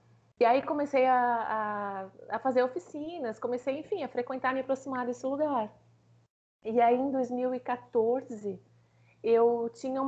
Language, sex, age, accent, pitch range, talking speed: Portuguese, female, 30-49, Brazilian, 215-260 Hz, 135 wpm